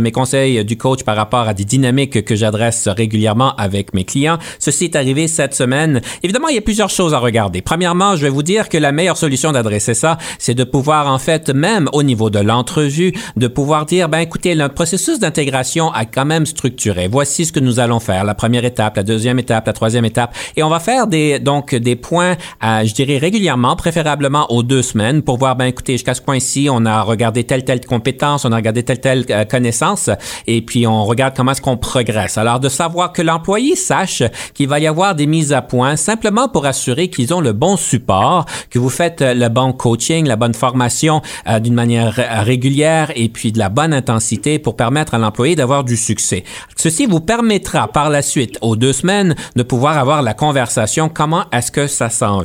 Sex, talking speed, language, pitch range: male, 215 wpm, French, 120-155 Hz